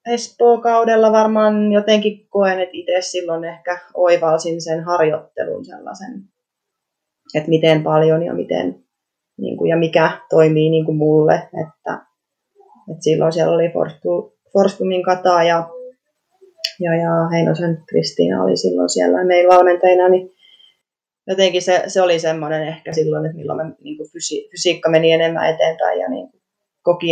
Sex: female